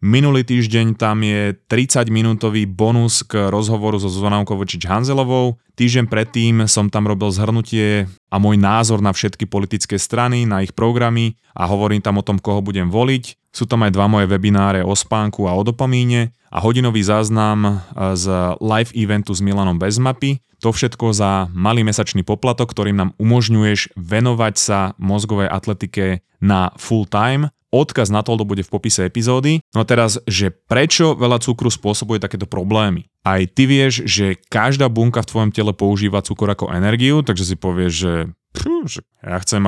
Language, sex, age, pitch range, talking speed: Slovak, male, 20-39, 100-115 Hz, 165 wpm